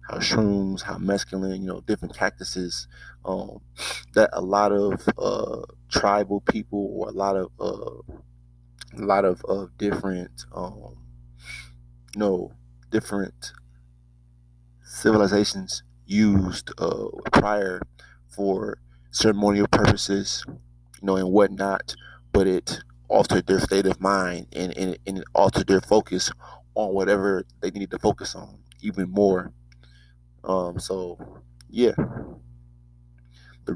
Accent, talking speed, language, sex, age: American, 115 wpm, English, male, 30-49